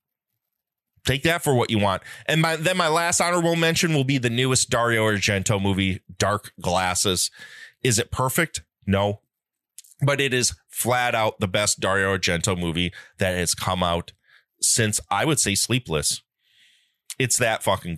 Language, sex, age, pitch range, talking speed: English, male, 30-49, 95-150 Hz, 160 wpm